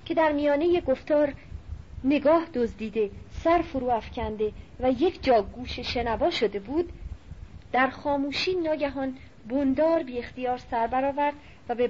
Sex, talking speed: female, 130 wpm